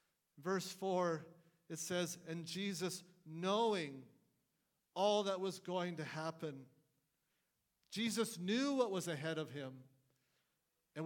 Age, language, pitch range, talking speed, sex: 50-69, English, 165-205 Hz, 115 wpm, male